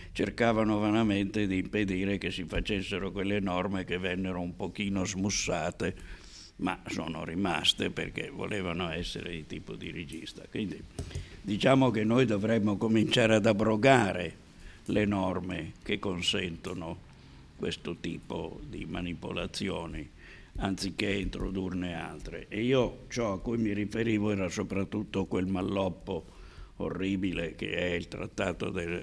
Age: 60-79